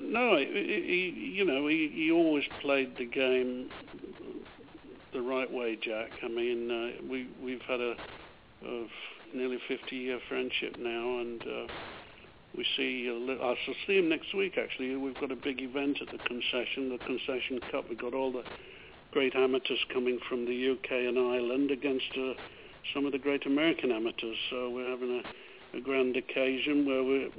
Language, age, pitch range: English, 60-79, 125-145 Hz